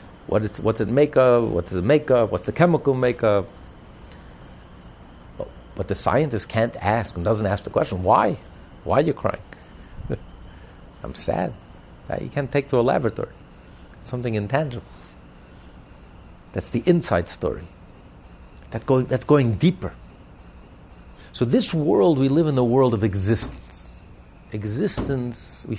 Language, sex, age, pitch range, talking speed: English, male, 50-69, 90-140 Hz, 145 wpm